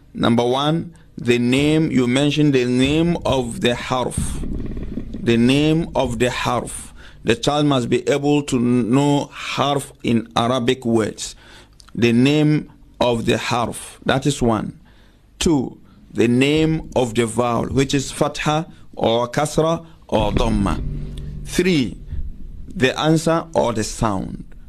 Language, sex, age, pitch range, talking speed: English, male, 50-69, 115-150 Hz, 130 wpm